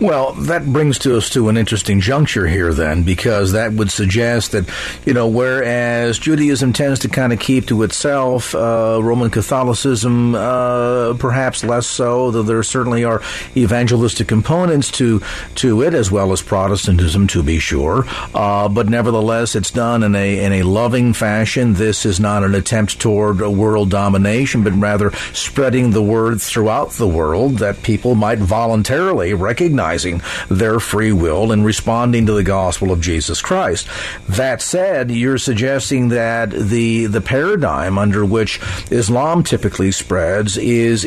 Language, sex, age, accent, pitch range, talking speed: English, male, 50-69, American, 105-125 Hz, 160 wpm